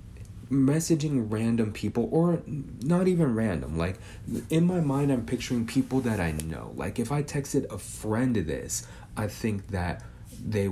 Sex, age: male, 30-49